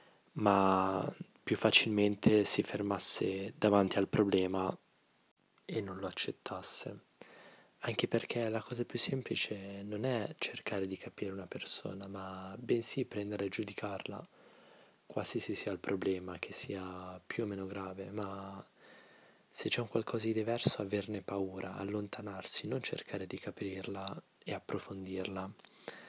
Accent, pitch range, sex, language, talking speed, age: native, 95-110 Hz, male, Italian, 130 wpm, 20-39